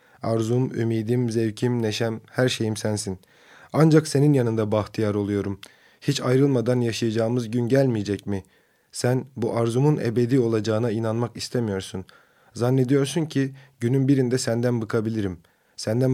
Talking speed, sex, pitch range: 120 wpm, male, 110-125 Hz